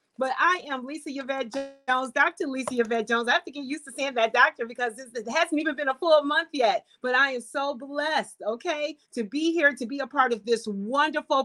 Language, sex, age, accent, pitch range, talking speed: English, female, 40-59, American, 250-310 Hz, 230 wpm